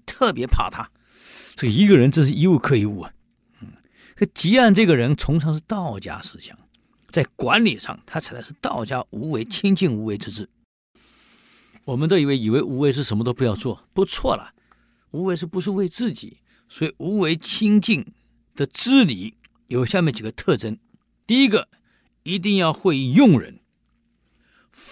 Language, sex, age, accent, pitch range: Chinese, male, 50-69, native, 135-225 Hz